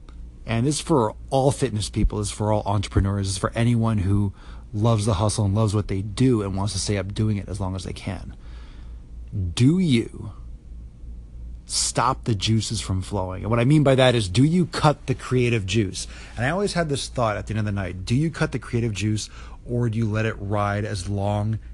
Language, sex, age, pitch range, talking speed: English, male, 30-49, 85-120 Hz, 230 wpm